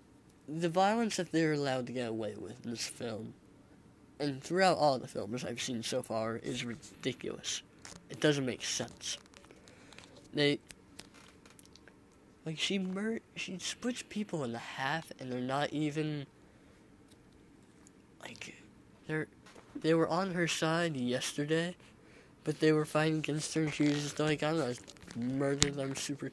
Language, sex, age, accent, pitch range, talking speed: English, male, 20-39, American, 125-160 Hz, 150 wpm